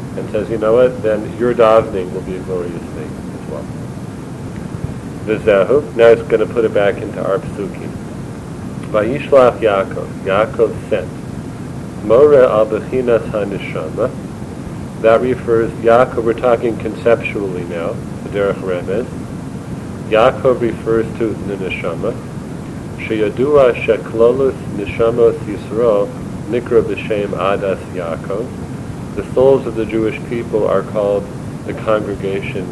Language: English